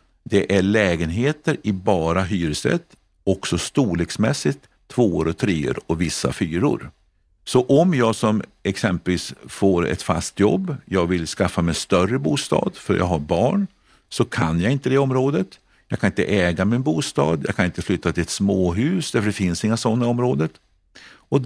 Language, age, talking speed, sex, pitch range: Swedish, 50-69, 165 wpm, male, 85-110 Hz